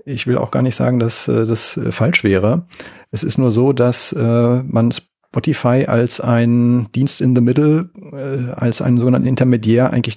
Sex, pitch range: male, 115-130 Hz